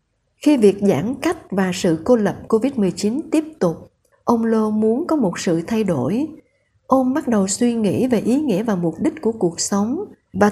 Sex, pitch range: female, 200-250 Hz